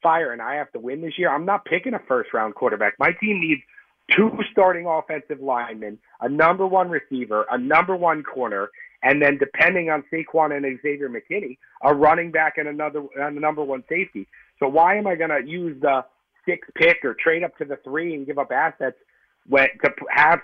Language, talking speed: English, 195 wpm